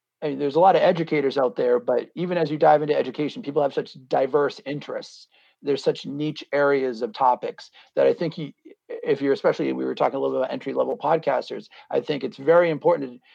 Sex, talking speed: male, 200 wpm